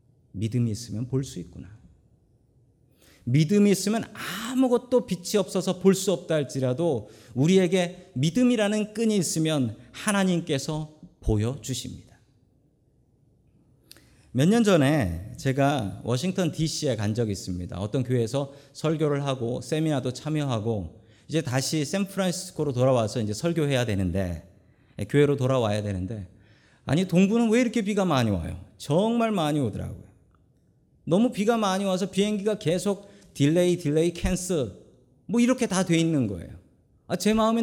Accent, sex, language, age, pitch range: native, male, Korean, 40-59, 120-190 Hz